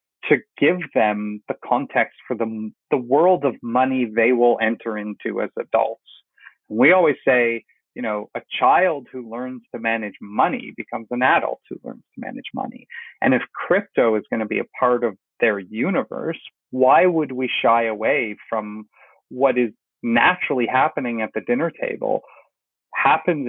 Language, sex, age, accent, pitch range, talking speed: English, male, 30-49, American, 115-160 Hz, 165 wpm